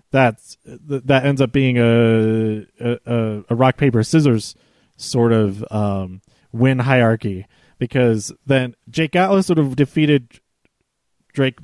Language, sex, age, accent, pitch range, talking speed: English, male, 30-49, American, 115-150 Hz, 125 wpm